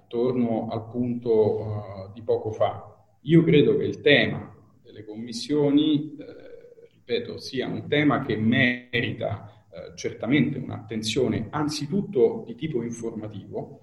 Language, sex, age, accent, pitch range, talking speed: Italian, male, 40-59, native, 110-150 Hz, 115 wpm